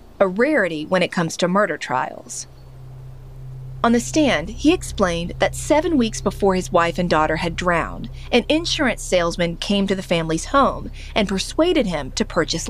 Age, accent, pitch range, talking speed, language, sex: 30-49, American, 155-245 Hz, 170 wpm, English, female